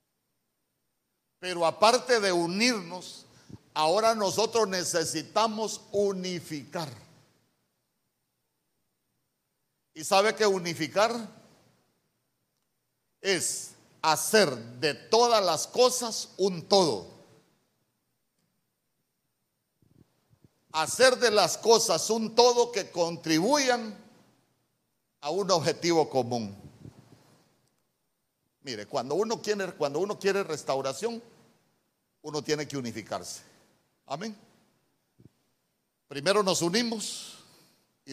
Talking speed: 75 wpm